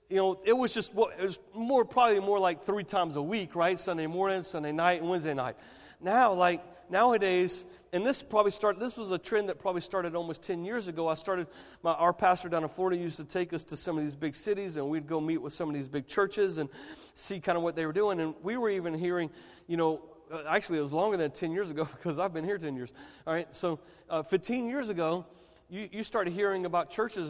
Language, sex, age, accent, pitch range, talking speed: English, male, 40-59, American, 140-180 Hz, 250 wpm